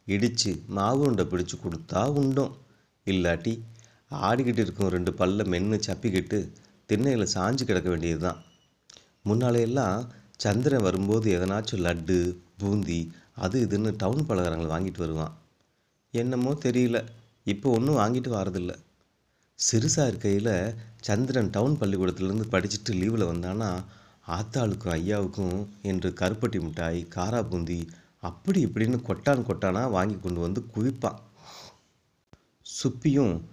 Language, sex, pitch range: Tamil, male, 90-115 Hz